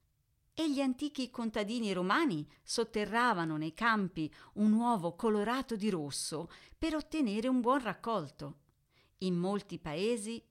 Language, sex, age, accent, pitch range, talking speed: Italian, female, 50-69, native, 165-245 Hz, 120 wpm